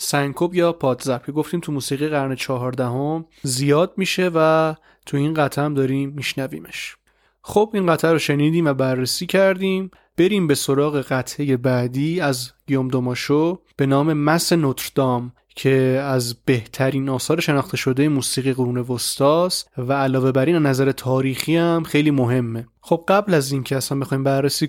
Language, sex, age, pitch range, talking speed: Persian, male, 30-49, 130-160 Hz, 150 wpm